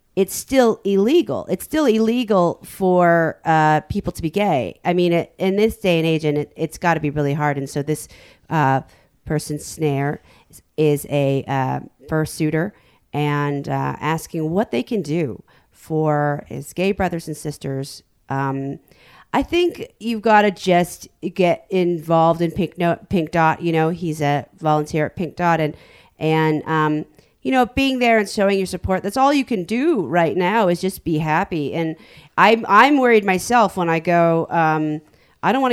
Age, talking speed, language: 40-59, 180 wpm, English